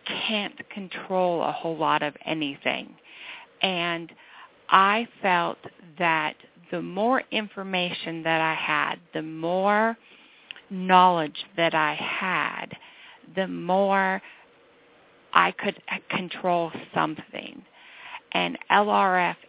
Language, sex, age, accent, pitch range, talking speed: English, female, 40-59, American, 160-190 Hz, 95 wpm